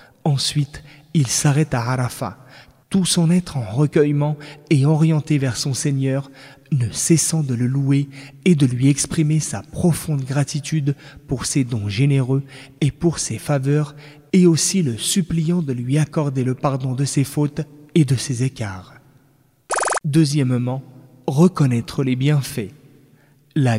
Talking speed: 140 wpm